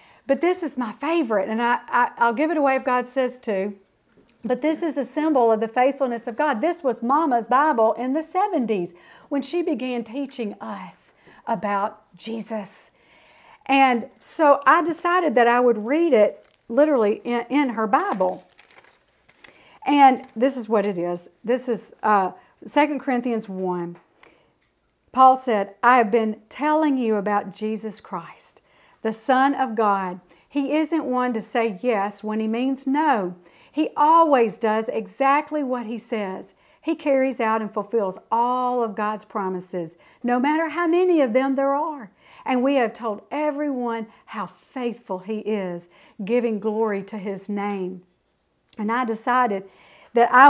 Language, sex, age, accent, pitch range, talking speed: English, female, 50-69, American, 215-275 Hz, 160 wpm